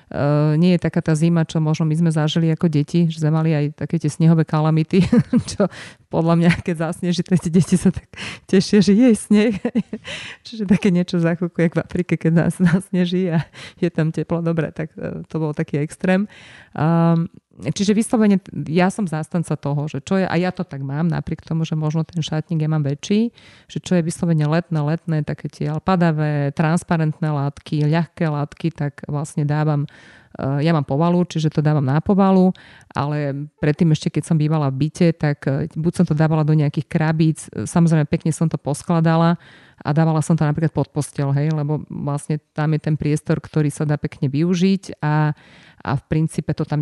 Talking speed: 190 wpm